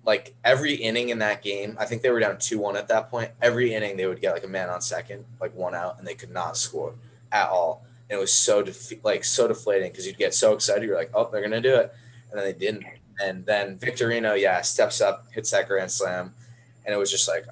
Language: English